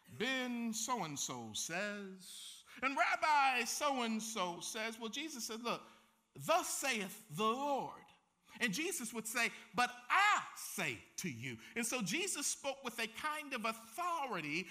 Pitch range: 220-285 Hz